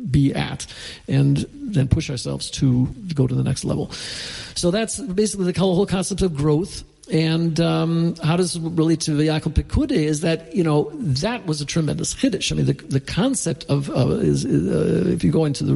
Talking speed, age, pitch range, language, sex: 200 wpm, 50-69, 135-165 Hz, English, male